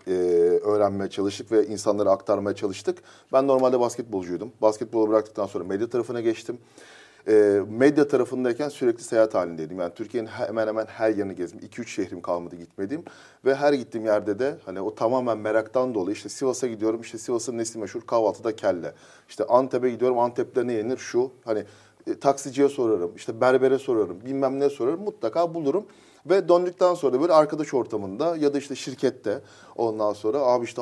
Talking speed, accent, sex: 165 wpm, native, male